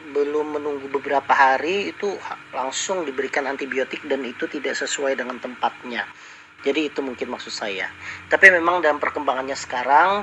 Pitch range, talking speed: 140-190 Hz, 140 wpm